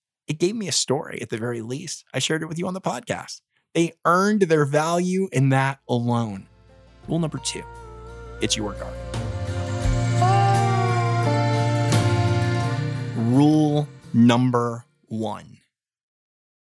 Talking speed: 120 wpm